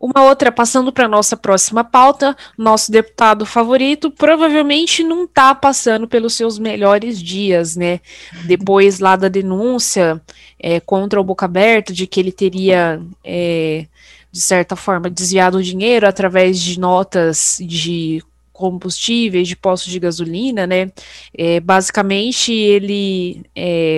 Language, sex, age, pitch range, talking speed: Portuguese, female, 20-39, 190-230 Hz, 130 wpm